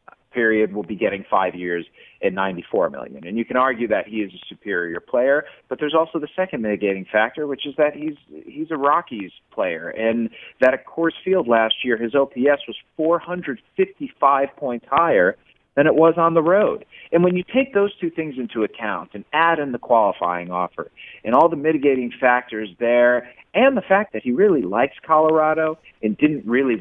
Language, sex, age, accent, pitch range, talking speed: English, male, 40-59, American, 110-155 Hz, 190 wpm